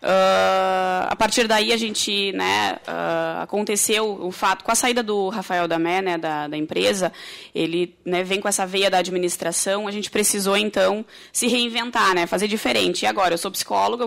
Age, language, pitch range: 20-39, Portuguese, 190-230 Hz